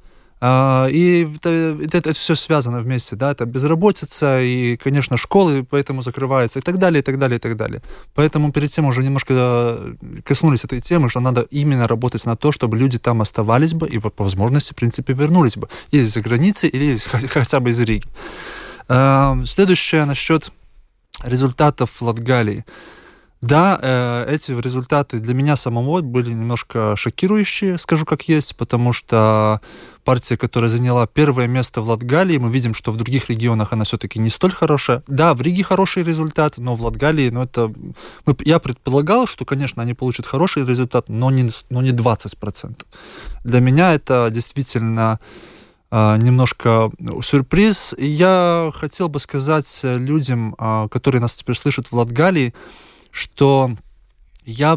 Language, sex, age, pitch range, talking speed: Russian, male, 20-39, 120-145 Hz, 150 wpm